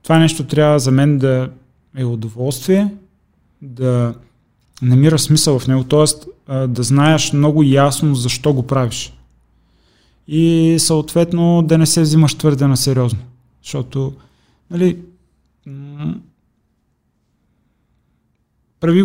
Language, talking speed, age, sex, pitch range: Bulgarian, 105 wpm, 30-49, male, 125-150 Hz